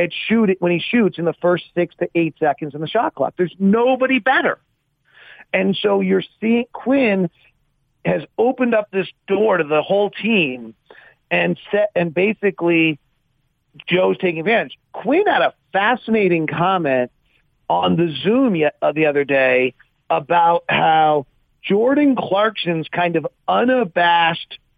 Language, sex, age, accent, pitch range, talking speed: English, male, 40-59, American, 150-195 Hz, 140 wpm